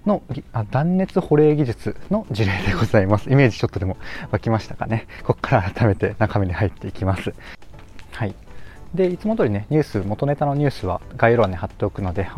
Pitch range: 100-145 Hz